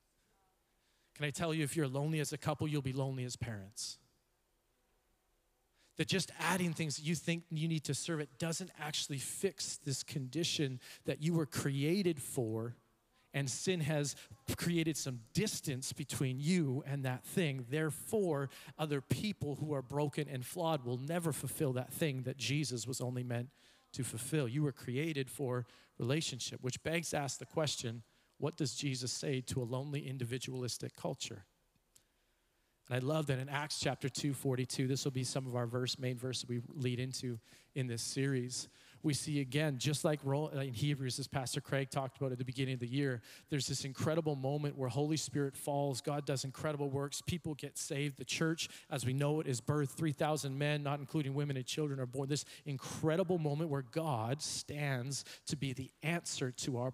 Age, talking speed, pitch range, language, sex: 40-59, 185 wpm, 130-155 Hz, English, male